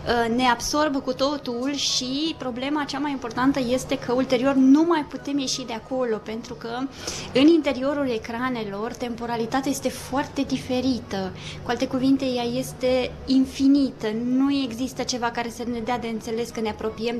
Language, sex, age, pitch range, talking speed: Romanian, female, 20-39, 220-265 Hz, 155 wpm